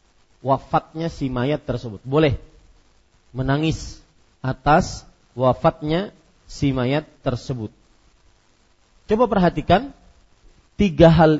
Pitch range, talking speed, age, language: 130-165 Hz, 80 wpm, 40-59, Malay